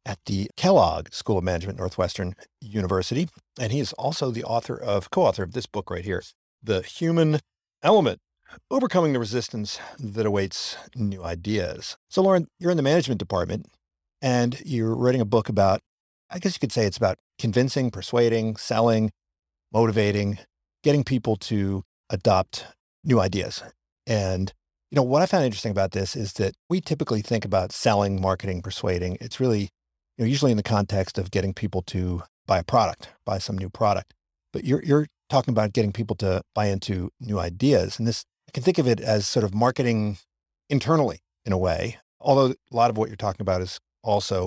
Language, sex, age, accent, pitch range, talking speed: English, male, 50-69, American, 95-135 Hz, 180 wpm